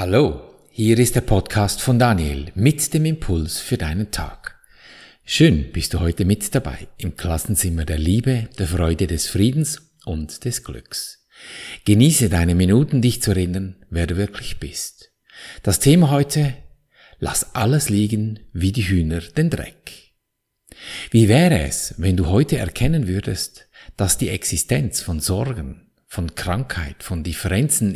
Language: German